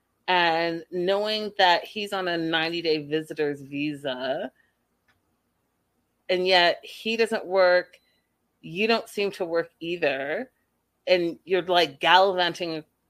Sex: female